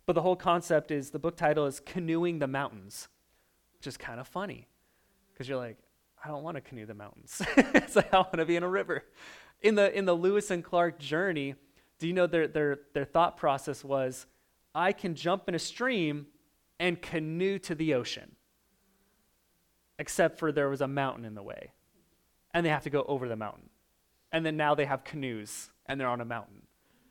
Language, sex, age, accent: English, male, 20-39, American